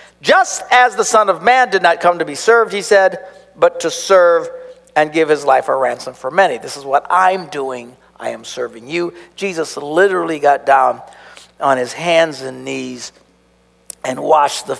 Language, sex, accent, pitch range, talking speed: English, male, American, 155-260 Hz, 185 wpm